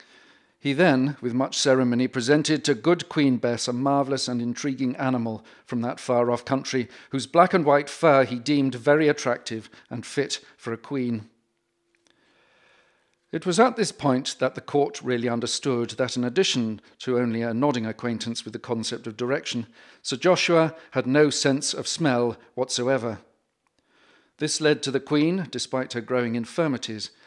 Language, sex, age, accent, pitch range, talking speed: English, male, 50-69, British, 120-145 Hz, 160 wpm